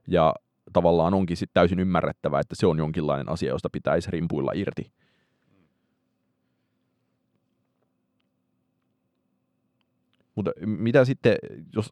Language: Finnish